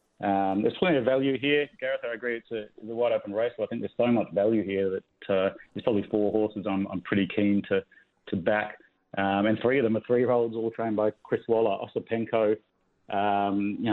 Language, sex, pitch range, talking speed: English, male, 100-110 Hz, 230 wpm